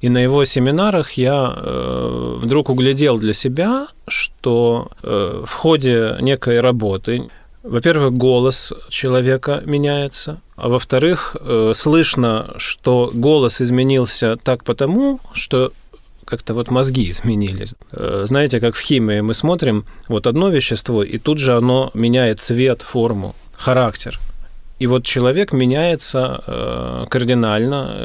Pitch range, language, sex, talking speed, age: 115-140 Hz, Russian, male, 115 wpm, 30-49